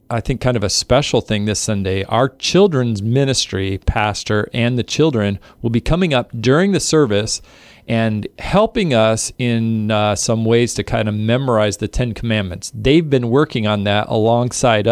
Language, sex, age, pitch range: English, male, 40-59, 105-130 Hz